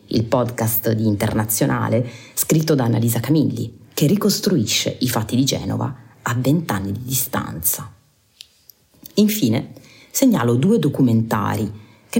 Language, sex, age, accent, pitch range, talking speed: Italian, female, 30-49, native, 115-170 Hz, 115 wpm